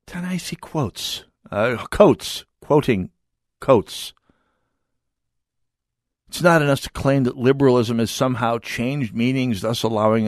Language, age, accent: English, 50-69, American